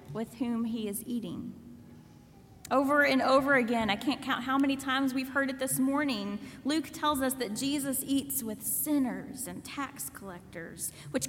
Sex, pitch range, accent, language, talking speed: female, 220-275 Hz, American, English, 170 wpm